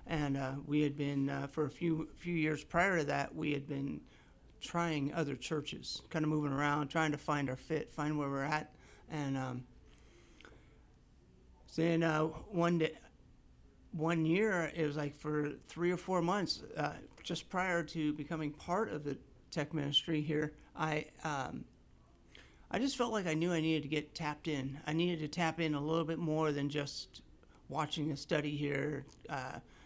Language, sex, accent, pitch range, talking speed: English, male, American, 140-165 Hz, 185 wpm